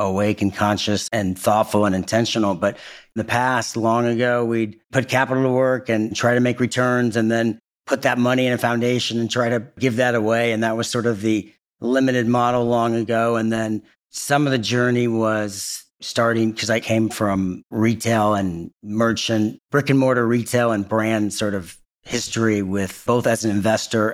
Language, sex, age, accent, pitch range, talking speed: English, male, 40-59, American, 105-120 Hz, 190 wpm